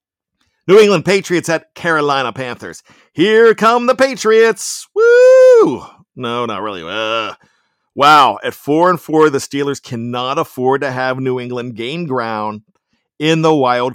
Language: English